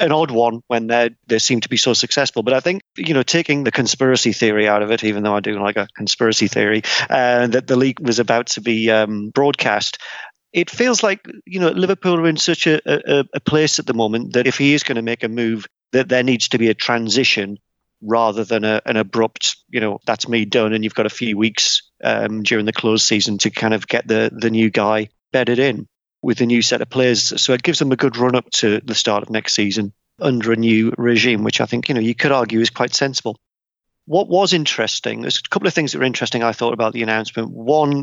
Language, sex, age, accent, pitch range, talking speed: English, male, 40-59, British, 110-130 Hz, 245 wpm